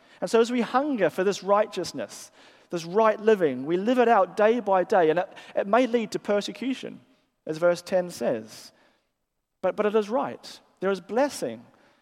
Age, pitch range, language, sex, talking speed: 40-59, 170-220 Hz, English, male, 185 wpm